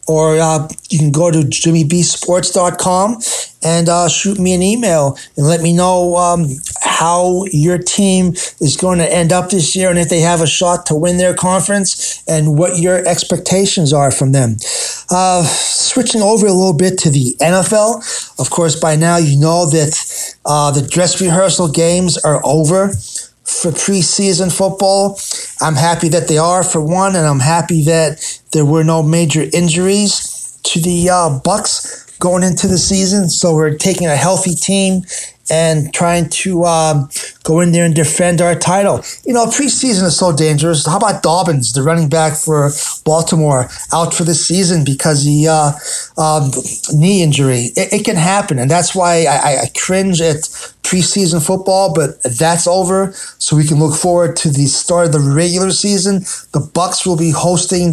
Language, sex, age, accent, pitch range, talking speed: English, male, 30-49, American, 155-185 Hz, 175 wpm